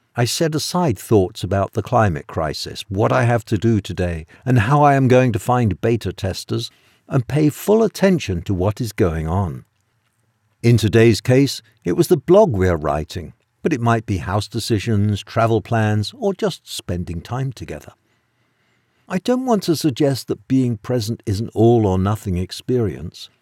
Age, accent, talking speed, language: 60-79, British, 170 wpm, English